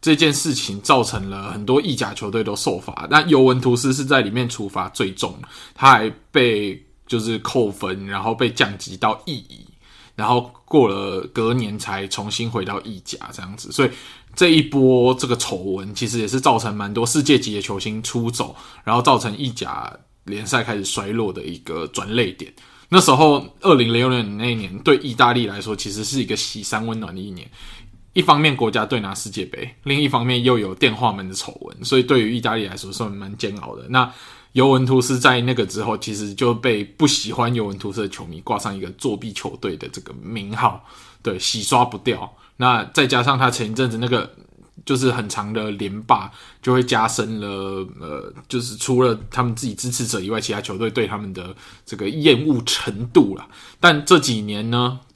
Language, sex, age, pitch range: Chinese, male, 20-39, 105-125 Hz